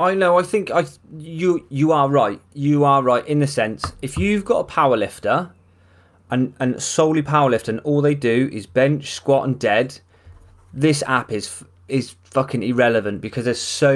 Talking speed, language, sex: 180 wpm, English, male